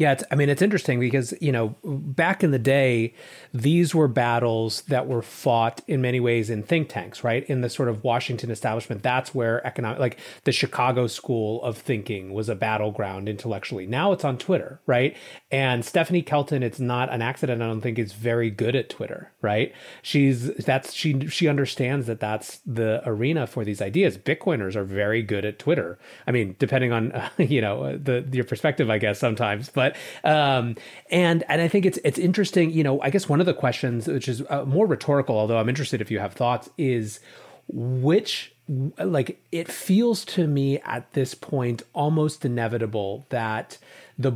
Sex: male